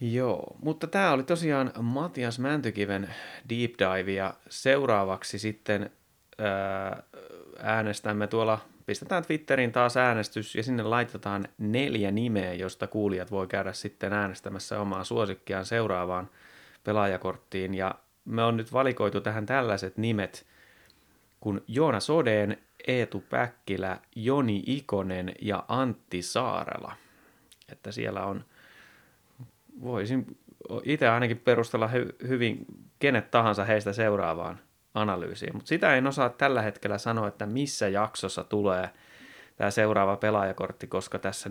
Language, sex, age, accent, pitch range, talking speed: Finnish, male, 30-49, native, 100-120 Hz, 115 wpm